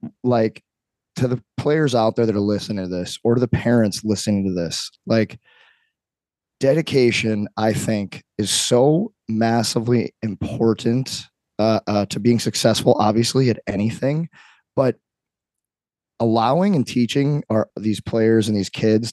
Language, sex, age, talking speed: English, male, 20-39, 140 wpm